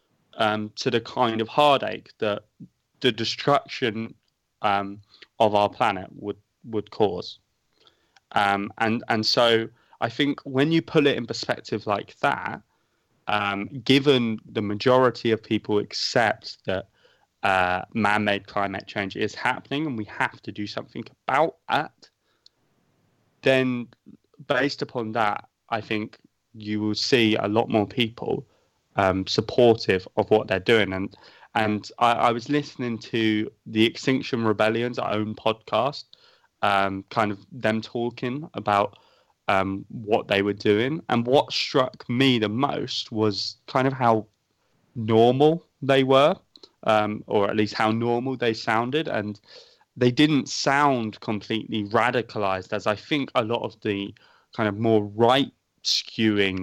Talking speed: 140 wpm